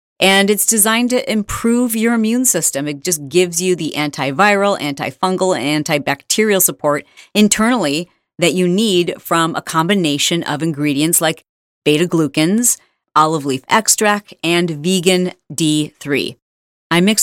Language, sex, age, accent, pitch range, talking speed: English, female, 40-59, American, 145-190 Hz, 125 wpm